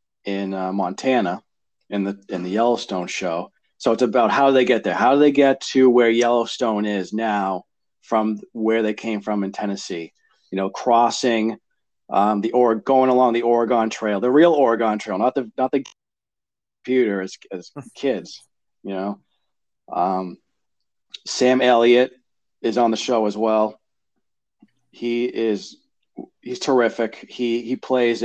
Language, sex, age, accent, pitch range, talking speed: English, male, 40-59, American, 100-120 Hz, 155 wpm